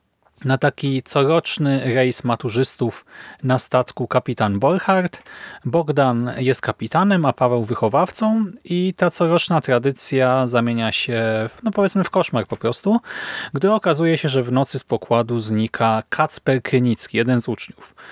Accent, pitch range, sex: native, 120-155 Hz, male